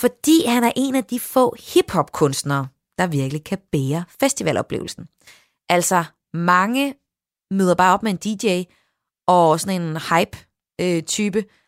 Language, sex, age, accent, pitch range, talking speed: Danish, female, 30-49, native, 160-200 Hz, 130 wpm